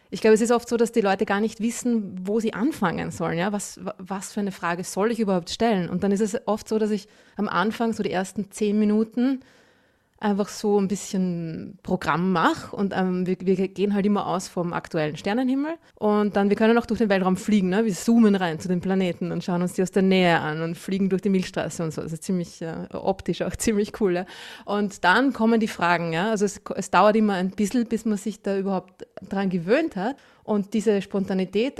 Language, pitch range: German, 185-220 Hz